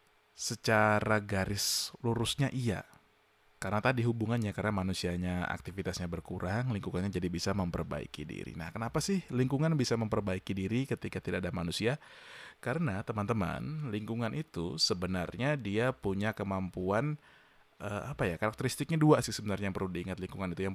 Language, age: Indonesian, 20-39